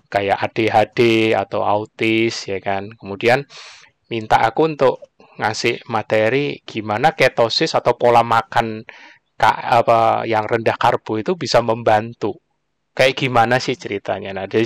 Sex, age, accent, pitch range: male, 20-39, native, 110-155 Hz